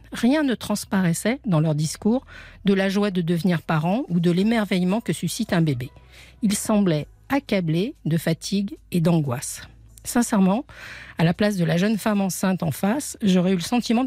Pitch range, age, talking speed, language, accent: 170-220 Hz, 50-69, 175 wpm, French, French